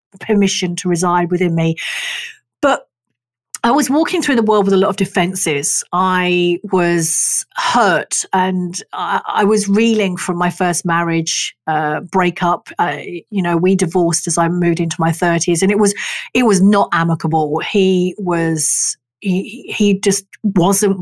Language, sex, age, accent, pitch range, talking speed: English, female, 40-59, British, 175-225 Hz, 155 wpm